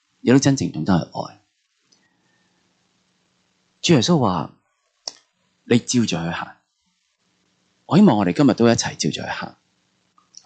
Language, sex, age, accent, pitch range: Chinese, male, 30-49, native, 90-140 Hz